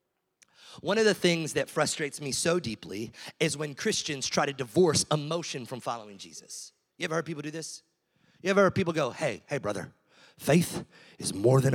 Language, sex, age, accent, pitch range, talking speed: English, male, 30-49, American, 150-210 Hz, 190 wpm